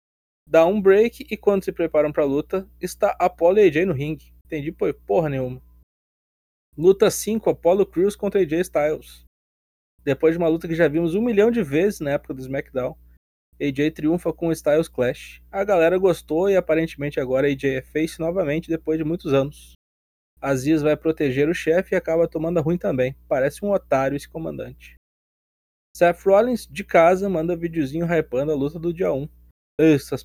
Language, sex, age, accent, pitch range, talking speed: Portuguese, male, 20-39, Brazilian, 130-175 Hz, 180 wpm